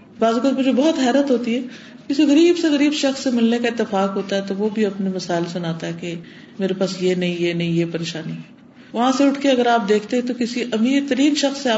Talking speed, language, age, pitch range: 170 wpm, Urdu, 50-69, 195-260 Hz